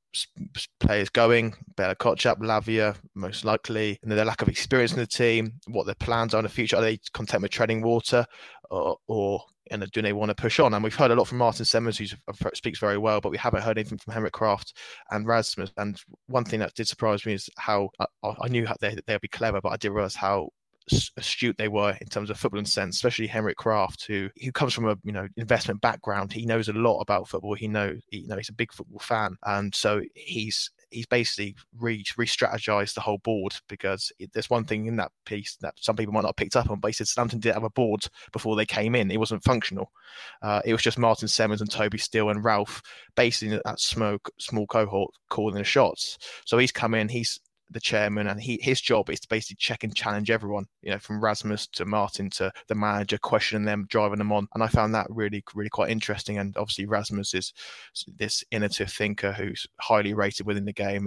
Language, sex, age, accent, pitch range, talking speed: English, male, 20-39, British, 105-115 Hz, 230 wpm